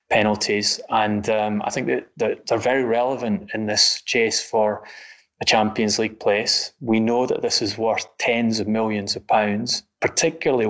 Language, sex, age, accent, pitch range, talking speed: English, male, 20-39, British, 100-115 Hz, 165 wpm